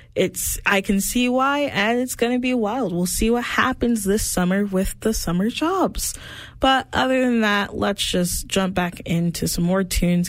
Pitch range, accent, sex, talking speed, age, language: 175-220 Hz, American, female, 195 wpm, 10-29, English